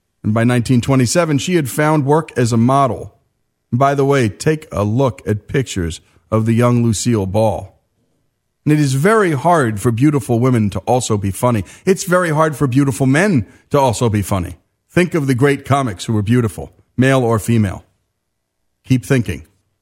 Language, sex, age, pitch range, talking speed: English, male, 40-59, 105-140 Hz, 175 wpm